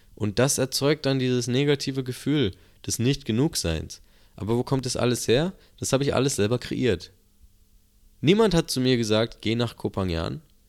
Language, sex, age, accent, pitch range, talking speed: German, male, 20-39, German, 100-125 Hz, 170 wpm